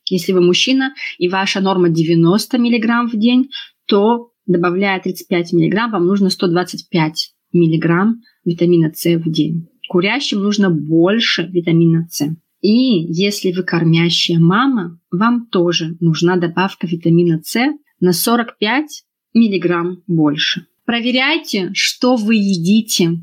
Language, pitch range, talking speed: Russian, 175-235 Hz, 120 wpm